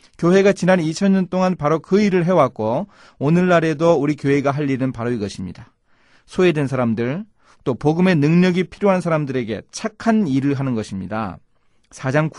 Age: 30-49